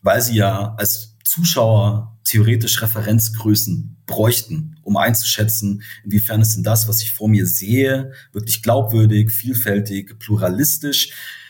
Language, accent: German, German